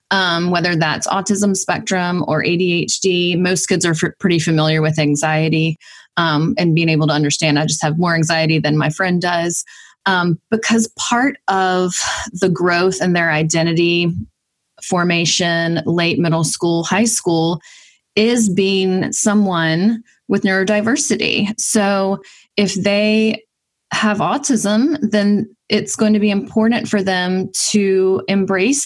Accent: American